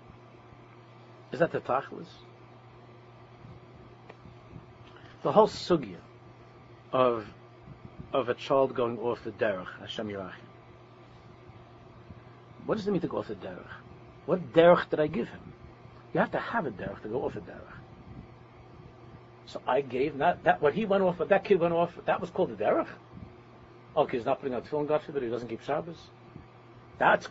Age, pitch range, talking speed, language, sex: 60-79, 120-150 Hz, 165 wpm, English, male